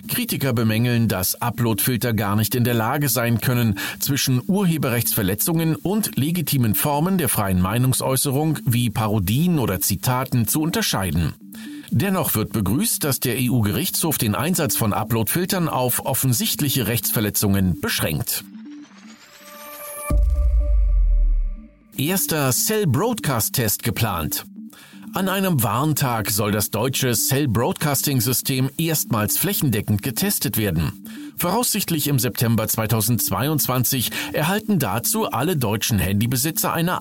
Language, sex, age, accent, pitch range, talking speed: German, male, 40-59, German, 110-155 Hz, 100 wpm